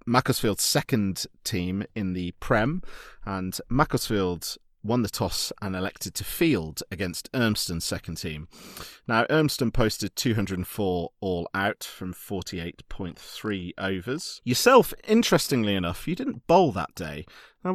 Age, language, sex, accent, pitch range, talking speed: 30-49, English, male, British, 95-130 Hz, 125 wpm